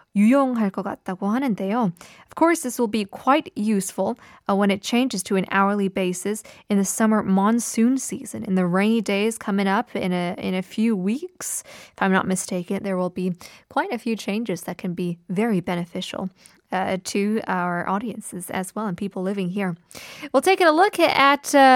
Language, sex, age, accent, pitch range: Korean, female, 20-39, American, 195-275 Hz